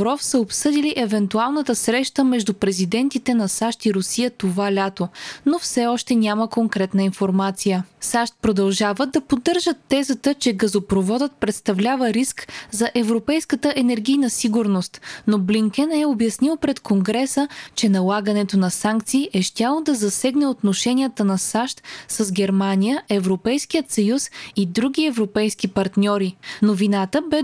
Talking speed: 125 wpm